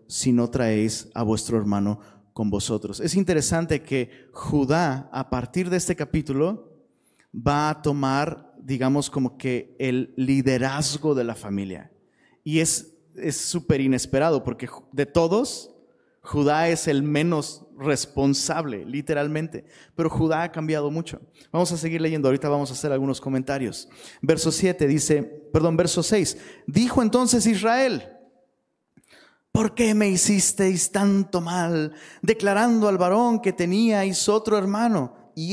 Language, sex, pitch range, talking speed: Spanish, male, 145-205 Hz, 135 wpm